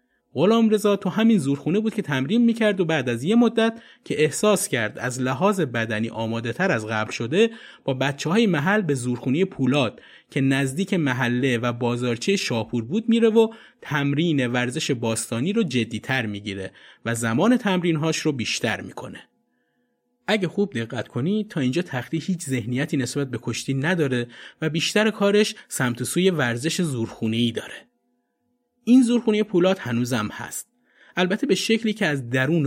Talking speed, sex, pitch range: 160 wpm, male, 125-185 Hz